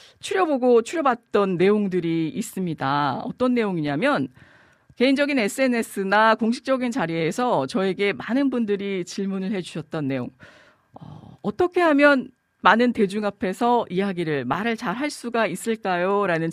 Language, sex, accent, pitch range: Korean, female, native, 170-240 Hz